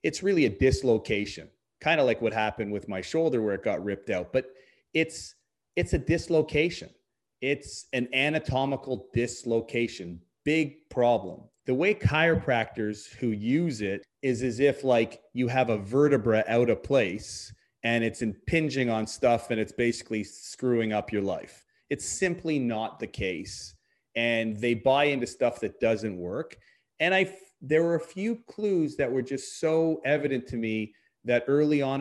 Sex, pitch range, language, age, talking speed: male, 115-145 Hz, English, 30-49, 165 wpm